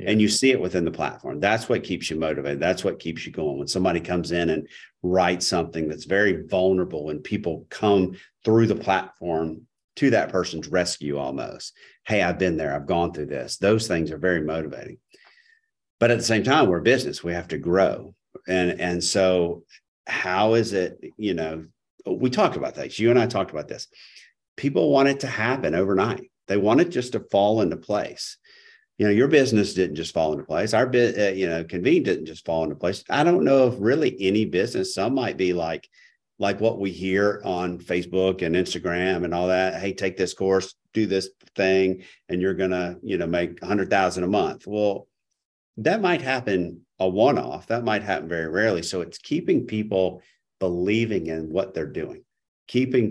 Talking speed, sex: 200 wpm, male